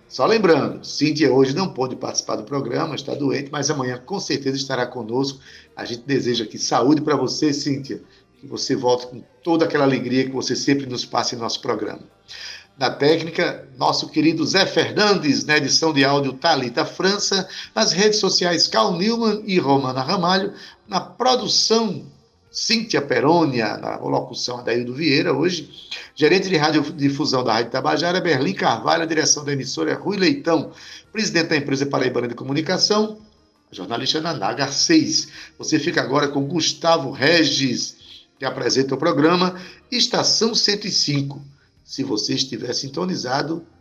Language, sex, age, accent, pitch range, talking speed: Portuguese, male, 60-79, Brazilian, 135-190 Hz, 150 wpm